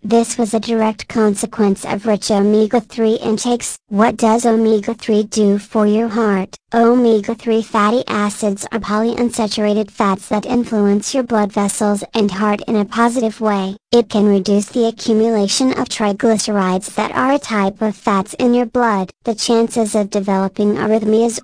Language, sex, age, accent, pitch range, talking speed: English, male, 40-59, American, 205-230 Hz, 150 wpm